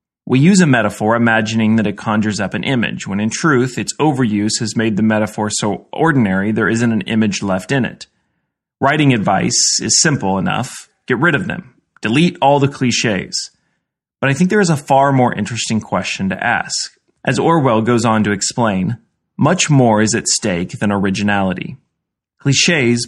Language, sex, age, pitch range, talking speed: English, male, 30-49, 110-135 Hz, 175 wpm